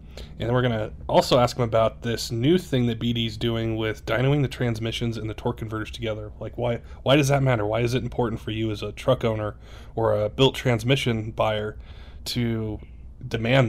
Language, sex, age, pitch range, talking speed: English, male, 20-39, 110-130 Hz, 205 wpm